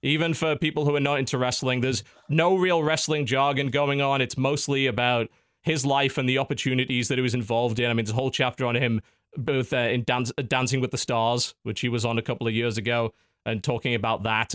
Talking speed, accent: 230 wpm, British